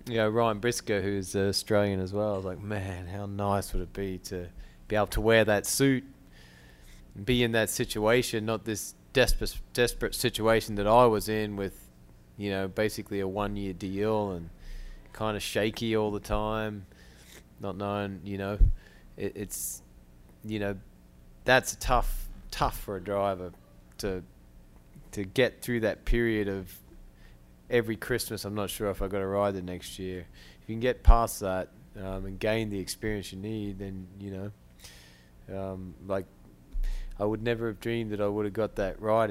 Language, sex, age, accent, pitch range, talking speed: English, male, 20-39, Australian, 90-110 Hz, 175 wpm